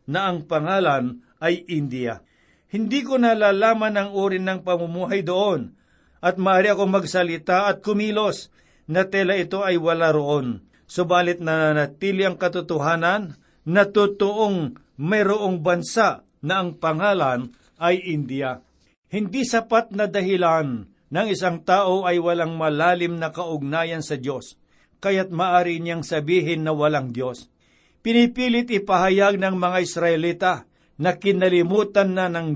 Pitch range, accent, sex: 160-195 Hz, native, male